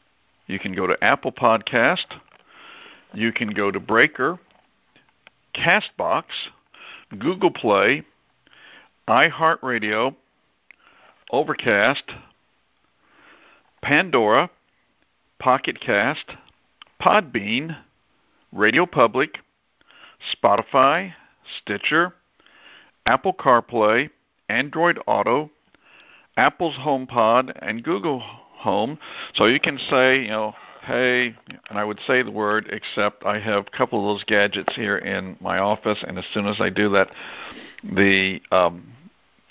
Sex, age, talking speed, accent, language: male, 60-79, 100 wpm, American, English